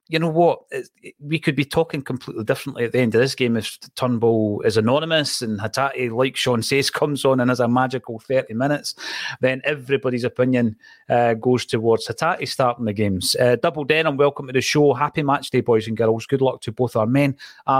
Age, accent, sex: 30-49, British, male